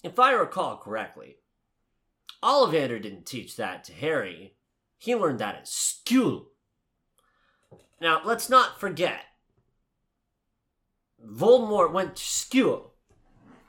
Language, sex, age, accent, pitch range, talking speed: English, male, 30-49, American, 120-180 Hz, 100 wpm